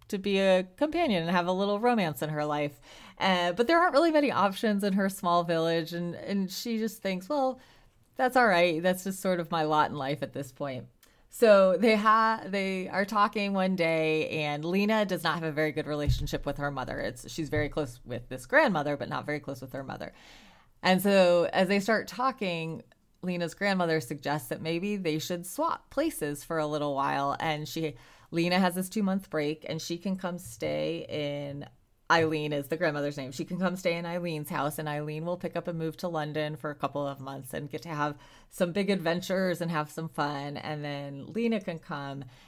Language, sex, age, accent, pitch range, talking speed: English, female, 20-39, American, 150-195 Hz, 215 wpm